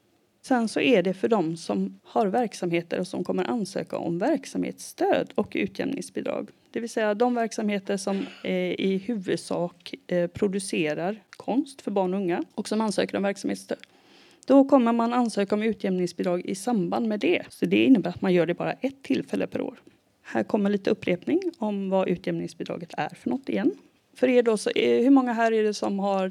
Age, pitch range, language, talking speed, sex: 30-49, 190-265 Hz, Swedish, 185 wpm, female